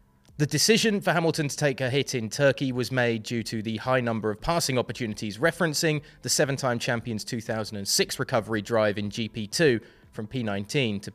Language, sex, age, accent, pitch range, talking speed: English, male, 20-39, British, 110-150 Hz, 170 wpm